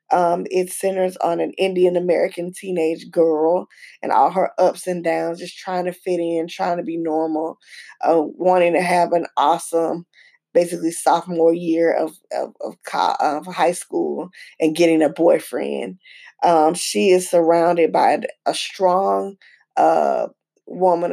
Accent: American